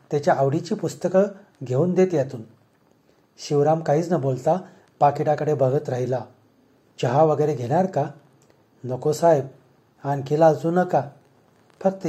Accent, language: native, Marathi